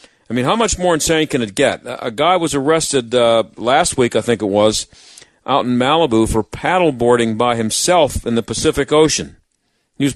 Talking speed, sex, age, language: 195 wpm, male, 50-69, English